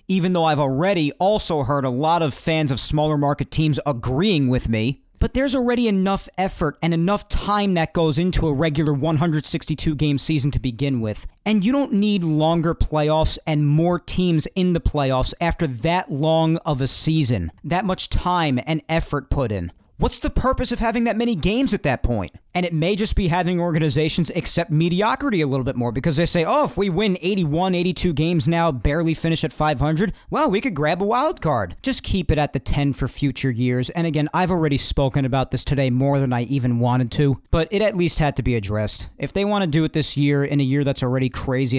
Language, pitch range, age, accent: English, 130-170 Hz, 40-59, American